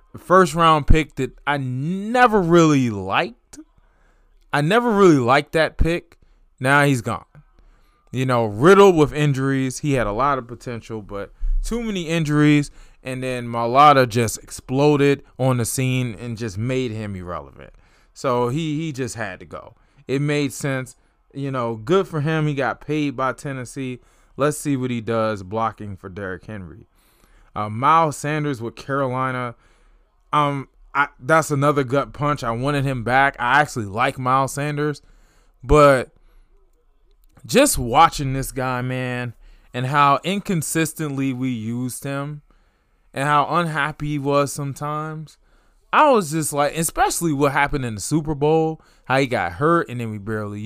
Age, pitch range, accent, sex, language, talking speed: 20-39, 120-150 Hz, American, male, English, 155 wpm